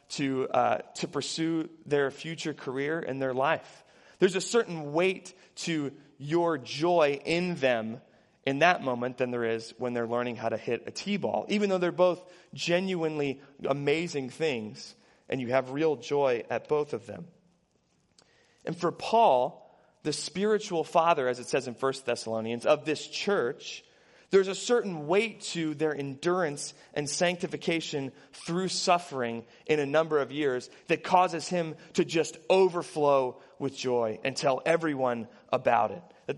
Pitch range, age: 135-180 Hz, 30-49